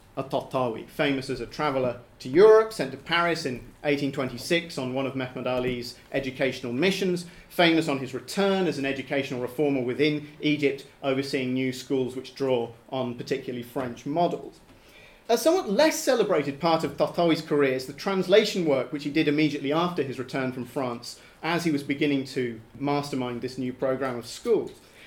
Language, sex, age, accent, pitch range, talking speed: English, male, 40-59, British, 130-160 Hz, 165 wpm